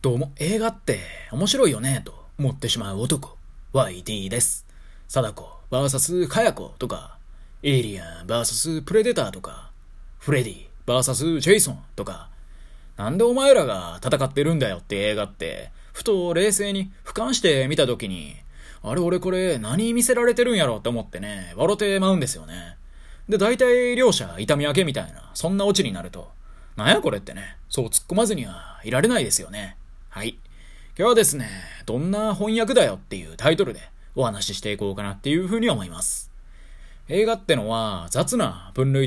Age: 20-39